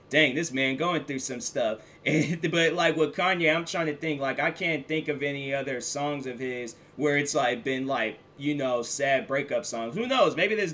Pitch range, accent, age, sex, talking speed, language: 120-160 Hz, American, 20-39, male, 220 wpm, English